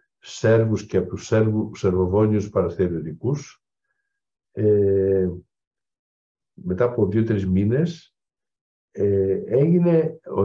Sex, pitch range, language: male, 95-140 Hz, Greek